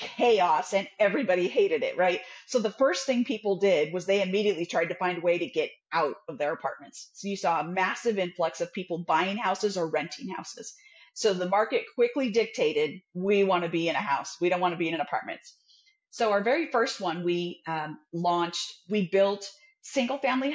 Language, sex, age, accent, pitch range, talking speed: English, female, 30-49, American, 170-235 Hz, 205 wpm